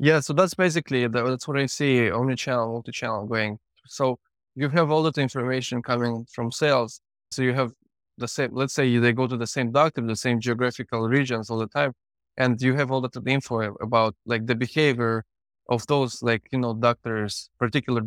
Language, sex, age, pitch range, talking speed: English, male, 20-39, 115-140 Hz, 195 wpm